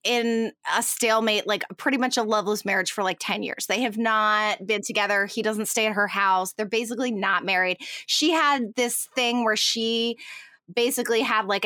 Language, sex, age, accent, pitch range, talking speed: English, female, 20-39, American, 210-260 Hz, 190 wpm